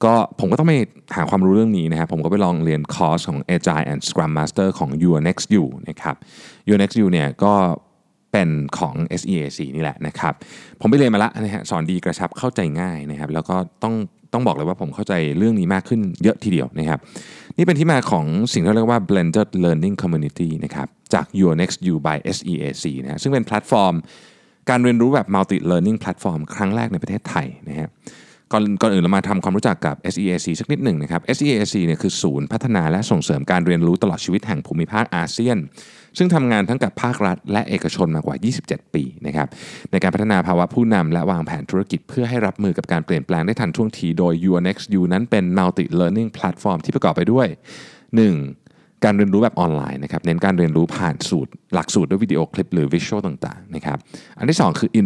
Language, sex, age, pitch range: Thai, male, 20-39, 80-110 Hz